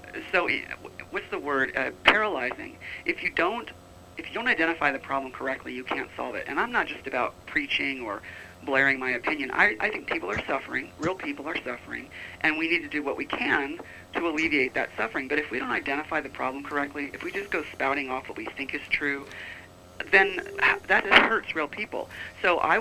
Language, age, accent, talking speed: English, 40-59, American, 205 wpm